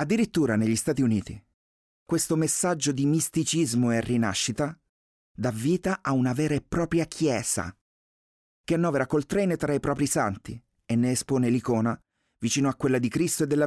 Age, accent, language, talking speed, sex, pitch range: 30-49, native, Italian, 160 wpm, male, 105-145 Hz